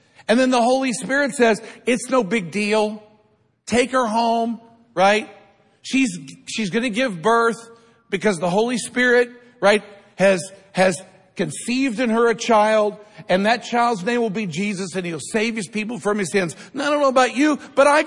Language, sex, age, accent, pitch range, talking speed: English, male, 50-69, American, 150-230 Hz, 175 wpm